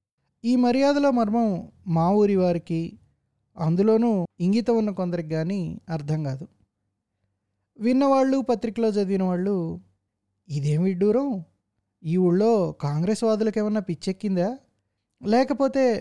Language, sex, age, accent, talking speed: Telugu, male, 20-39, native, 90 wpm